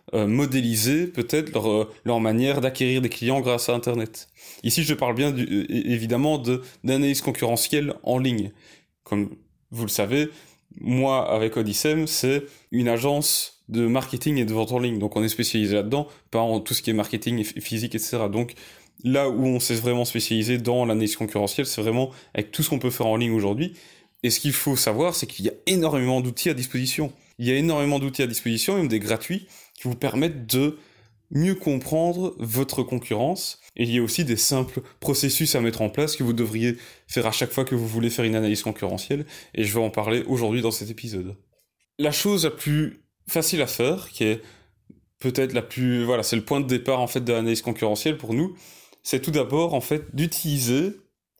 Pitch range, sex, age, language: 115-145 Hz, male, 20-39, French